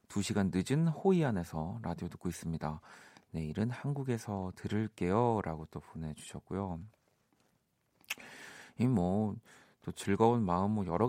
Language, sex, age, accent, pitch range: Korean, male, 40-59, native, 90-120 Hz